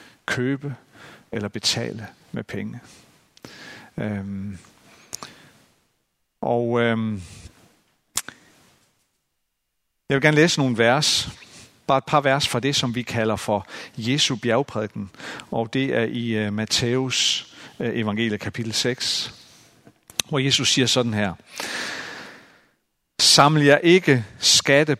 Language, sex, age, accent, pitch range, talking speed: Danish, male, 50-69, native, 110-140 Hz, 105 wpm